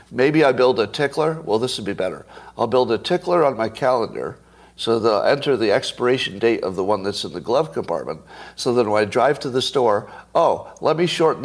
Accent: American